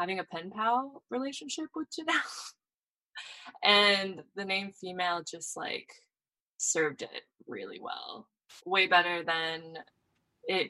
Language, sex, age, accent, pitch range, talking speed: English, female, 20-39, American, 165-205 Hz, 120 wpm